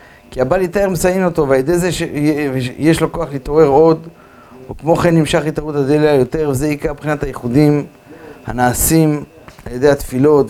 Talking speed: 155 wpm